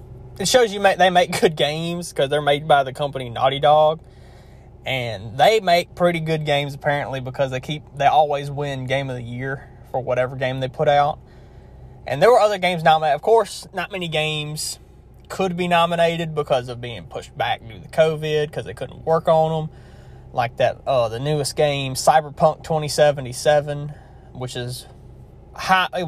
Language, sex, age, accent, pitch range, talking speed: English, male, 20-39, American, 130-160 Hz, 180 wpm